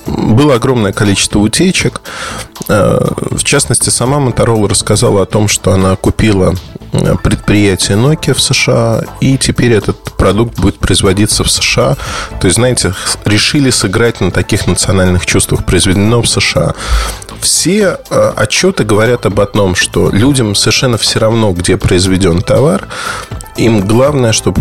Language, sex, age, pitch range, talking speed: Russian, male, 20-39, 95-115 Hz, 130 wpm